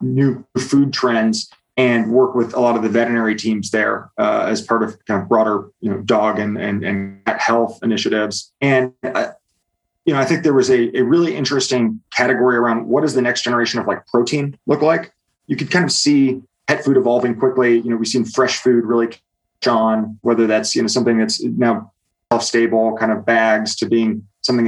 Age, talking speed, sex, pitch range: 30-49, 205 wpm, male, 115-130 Hz